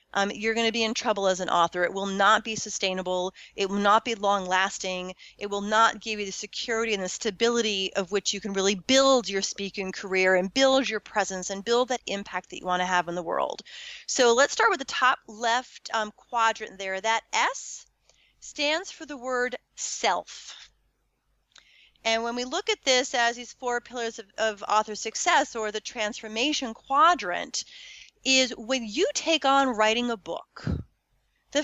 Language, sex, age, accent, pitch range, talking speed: English, female, 30-49, American, 210-275 Hz, 190 wpm